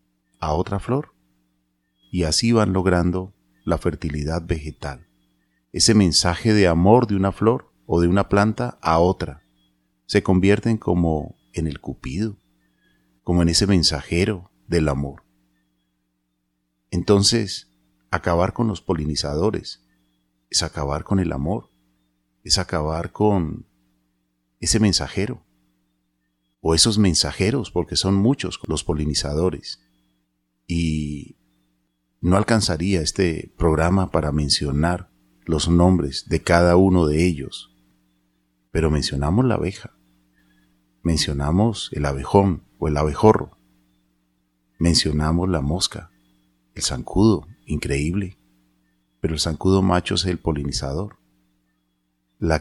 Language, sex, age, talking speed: Spanish, male, 30-49, 110 wpm